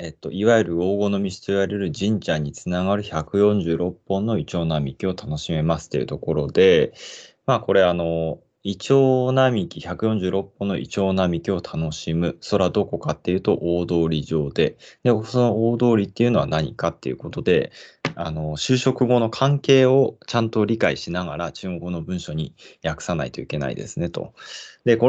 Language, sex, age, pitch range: Japanese, male, 20-39, 85-125 Hz